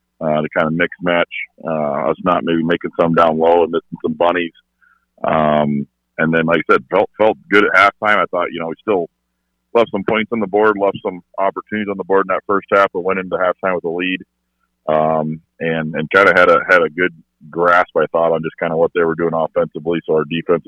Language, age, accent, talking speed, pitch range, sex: English, 40-59, American, 240 wpm, 75-95 Hz, male